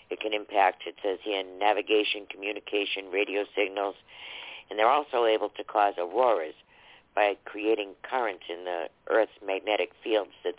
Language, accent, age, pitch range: English, American, 60-79, 105-170 Hz